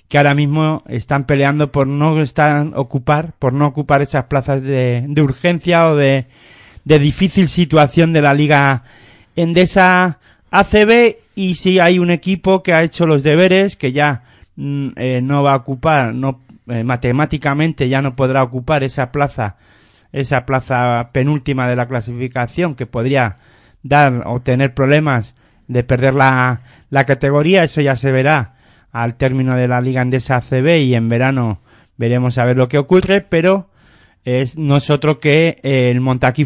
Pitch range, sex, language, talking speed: 125-150 Hz, male, Spanish, 160 wpm